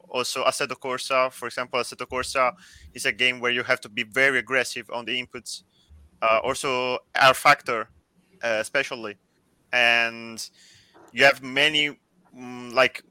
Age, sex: 30-49, male